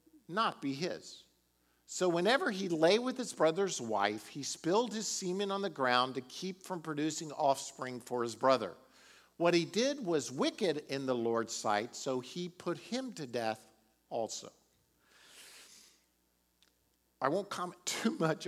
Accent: American